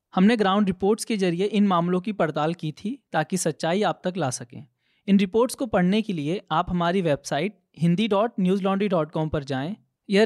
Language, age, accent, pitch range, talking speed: Hindi, 20-39, native, 160-200 Hz, 175 wpm